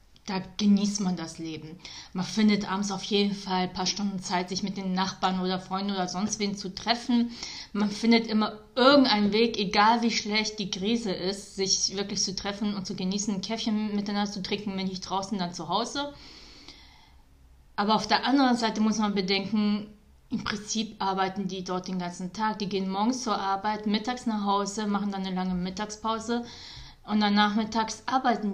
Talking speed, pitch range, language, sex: 185 wpm, 190-215 Hz, German, female